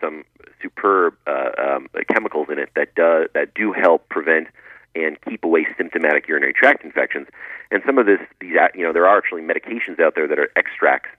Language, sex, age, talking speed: English, male, 30-49, 190 wpm